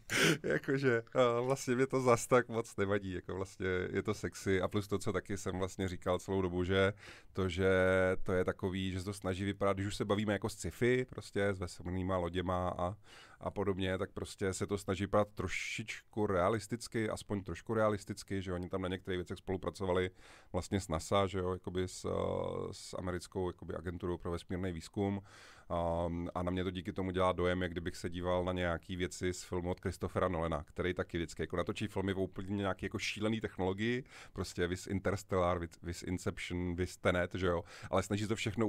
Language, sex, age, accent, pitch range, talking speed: Czech, male, 30-49, native, 90-100 Hz, 195 wpm